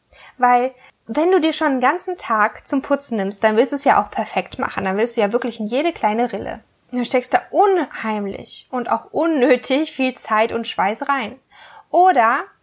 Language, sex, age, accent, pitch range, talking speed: German, female, 10-29, German, 240-295 Hz, 195 wpm